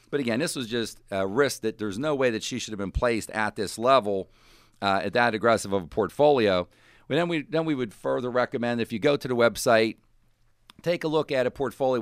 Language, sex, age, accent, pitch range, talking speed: English, male, 50-69, American, 105-125 Hz, 235 wpm